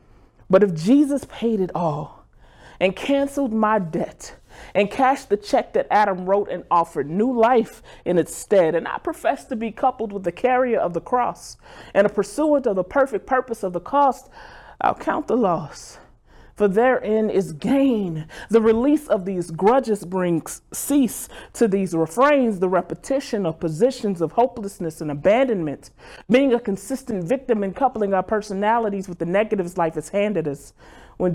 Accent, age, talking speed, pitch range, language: American, 30-49, 170 wpm, 170-230 Hz, English